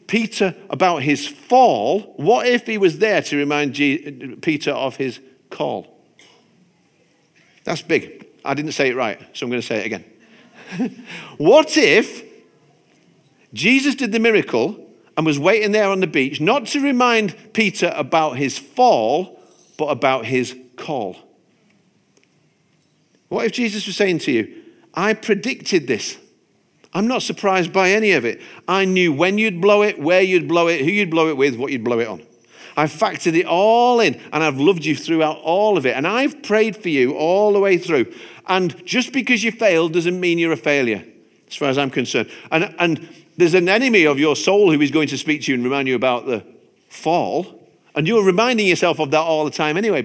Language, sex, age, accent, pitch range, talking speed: English, male, 50-69, British, 135-210 Hz, 190 wpm